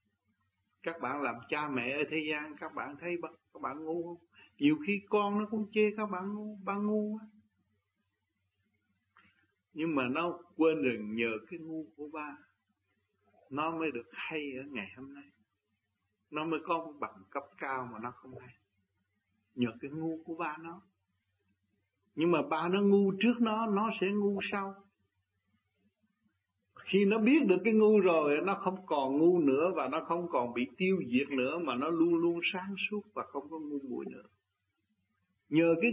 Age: 60-79